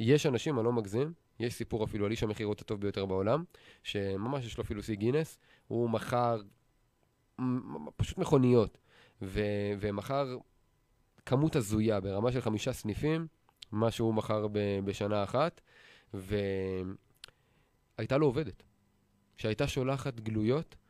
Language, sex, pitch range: Hebrew, male, 105-125 Hz